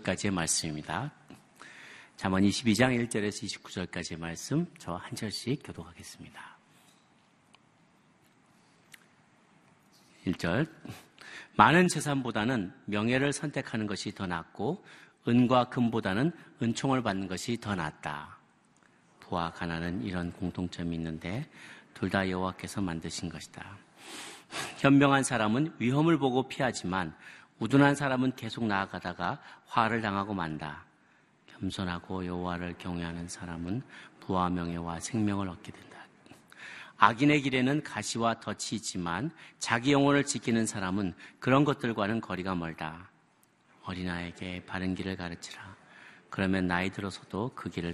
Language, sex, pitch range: Korean, male, 90-125 Hz